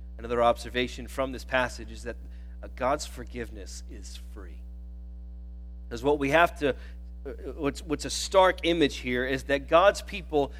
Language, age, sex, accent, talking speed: English, 40-59, male, American, 145 wpm